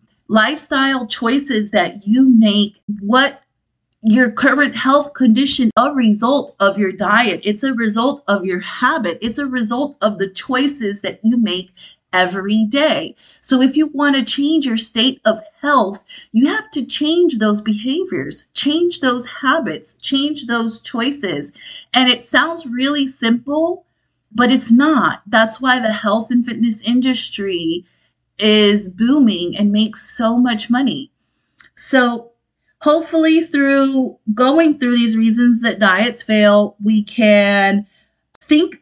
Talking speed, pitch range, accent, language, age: 140 wpm, 200-265 Hz, American, English, 40-59